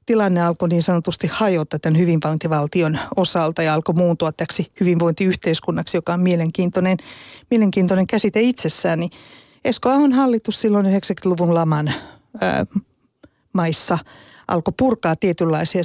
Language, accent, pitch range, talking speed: Finnish, native, 170-225 Hz, 115 wpm